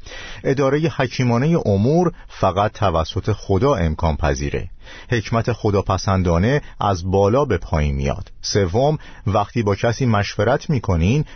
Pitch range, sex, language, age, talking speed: 90-125 Hz, male, Persian, 50-69, 115 wpm